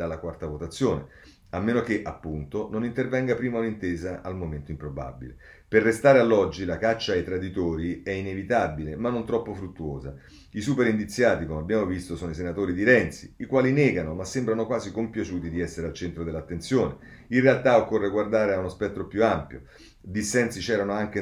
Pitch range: 85-110 Hz